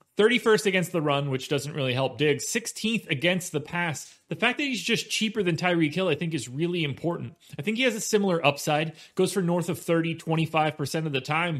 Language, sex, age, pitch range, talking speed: English, male, 30-49, 155-200 Hz, 215 wpm